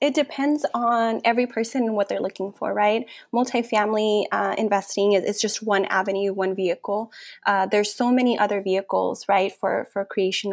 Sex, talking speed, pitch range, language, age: female, 175 wpm, 195-235 Hz, English, 10-29